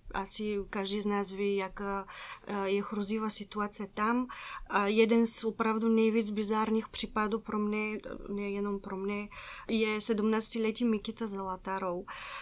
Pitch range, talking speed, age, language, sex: 200-225 Hz, 125 wpm, 20-39, Czech, female